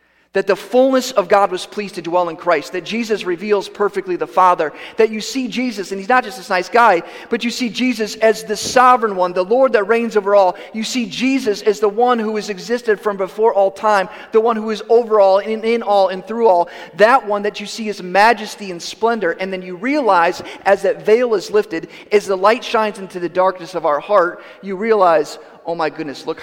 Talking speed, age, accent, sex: 230 wpm, 40-59, American, male